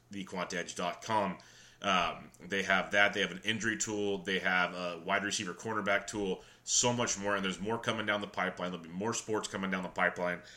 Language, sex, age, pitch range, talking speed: English, male, 30-49, 90-105 Hz, 195 wpm